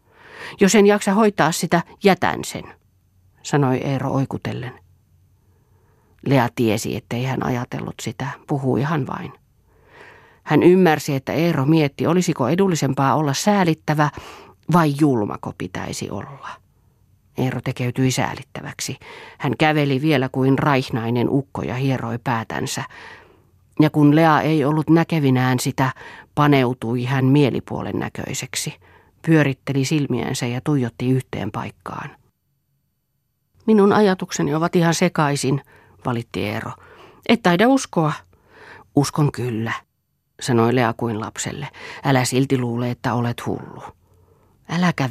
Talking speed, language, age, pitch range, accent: 110 wpm, Finnish, 40-59, 115-155 Hz, native